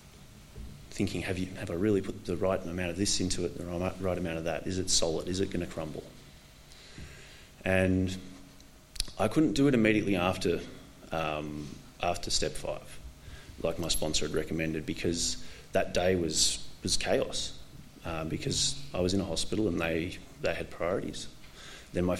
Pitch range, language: 80-105 Hz, English